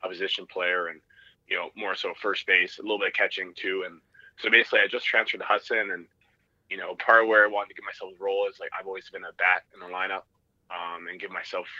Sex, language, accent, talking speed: male, English, American, 260 wpm